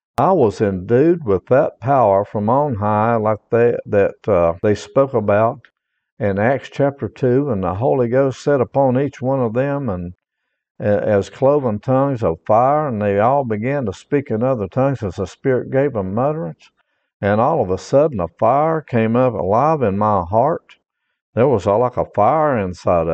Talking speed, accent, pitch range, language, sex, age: 185 wpm, American, 100-135 Hz, English, male, 60-79